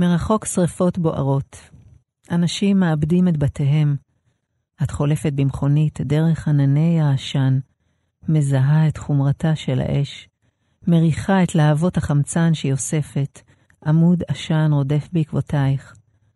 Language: Hebrew